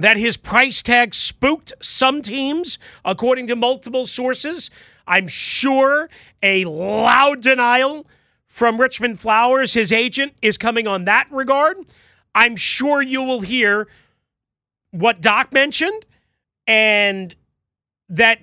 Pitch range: 215-275 Hz